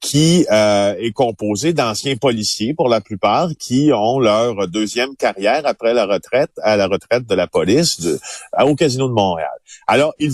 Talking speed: 170 wpm